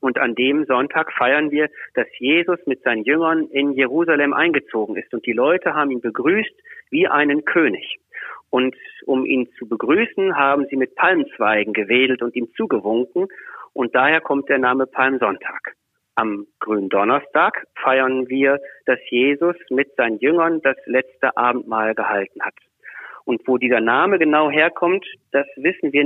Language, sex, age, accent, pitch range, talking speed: German, male, 40-59, German, 125-160 Hz, 155 wpm